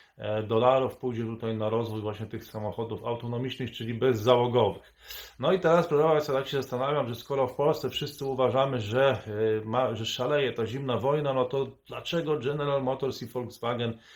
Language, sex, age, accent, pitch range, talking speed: Polish, male, 30-49, native, 115-140 Hz, 165 wpm